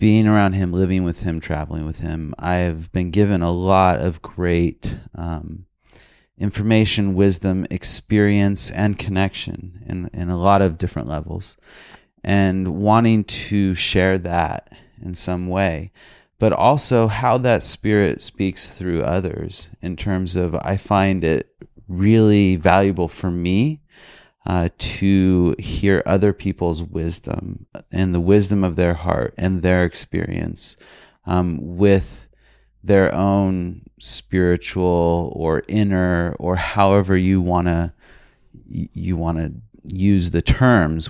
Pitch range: 85-100 Hz